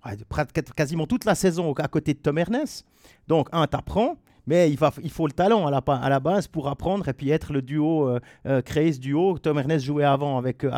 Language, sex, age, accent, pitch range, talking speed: French, male, 40-59, French, 140-185 Hz, 230 wpm